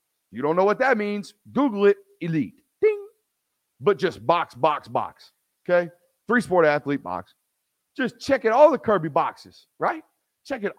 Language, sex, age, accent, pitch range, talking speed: English, male, 40-59, American, 150-200 Hz, 165 wpm